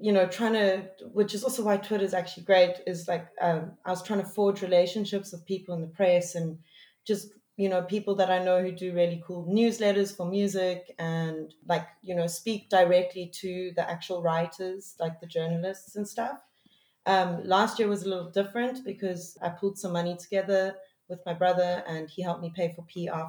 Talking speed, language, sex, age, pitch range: 205 wpm, English, female, 30-49, 175-200 Hz